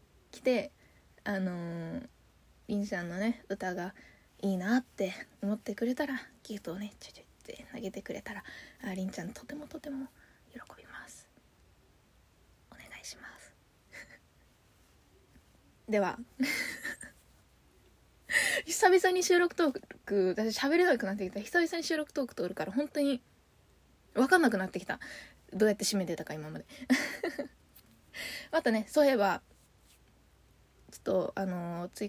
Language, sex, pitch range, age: Japanese, female, 185-235 Hz, 20-39